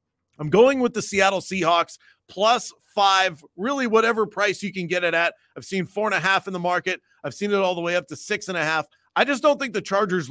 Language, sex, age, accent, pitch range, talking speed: English, male, 30-49, American, 145-190 Hz, 250 wpm